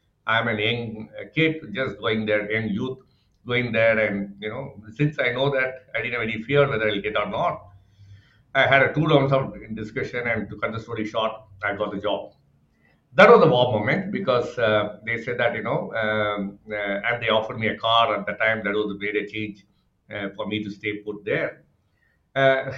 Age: 50-69